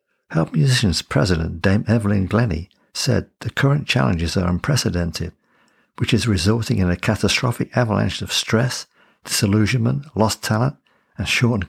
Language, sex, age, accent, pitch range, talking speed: English, male, 60-79, British, 95-115 Hz, 135 wpm